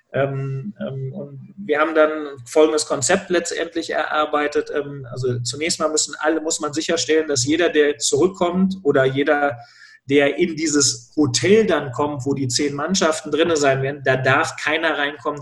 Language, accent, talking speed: German, German, 150 wpm